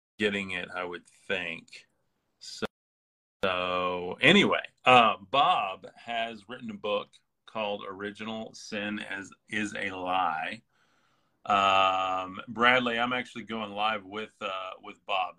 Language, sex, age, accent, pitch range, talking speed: English, male, 30-49, American, 95-110 Hz, 120 wpm